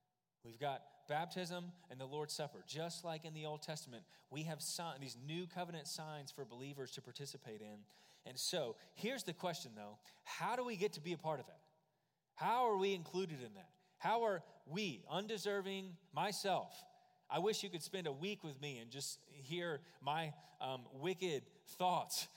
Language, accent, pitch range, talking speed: English, American, 145-195 Hz, 180 wpm